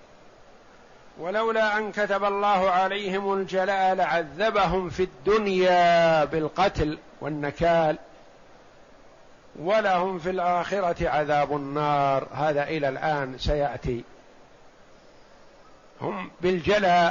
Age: 50-69